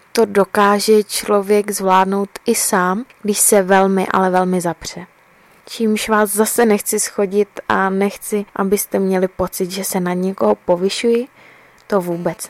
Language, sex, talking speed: English, female, 140 wpm